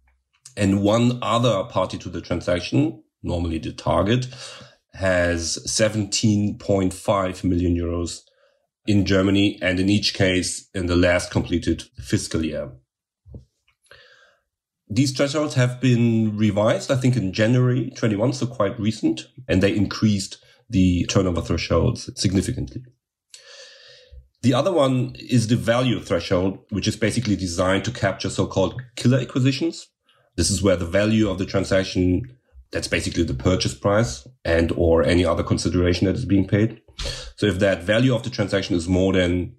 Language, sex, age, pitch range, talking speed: English, male, 40-59, 90-115 Hz, 140 wpm